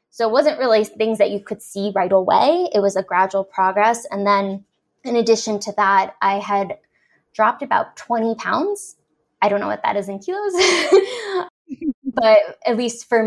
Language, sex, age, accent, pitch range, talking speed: English, female, 10-29, American, 195-230 Hz, 180 wpm